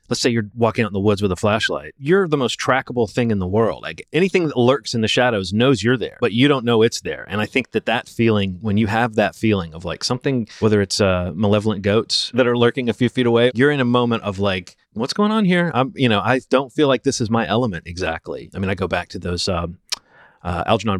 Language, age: English, 30-49